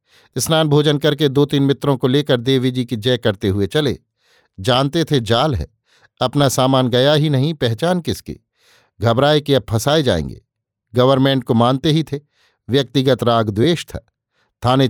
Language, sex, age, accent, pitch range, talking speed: Hindi, male, 50-69, native, 120-140 Hz, 160 wpm